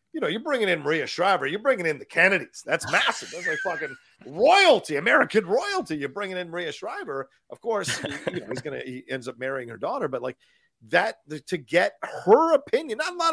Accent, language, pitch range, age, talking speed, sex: American, English, 135-205 Hz, 40-59, 215 wpm, male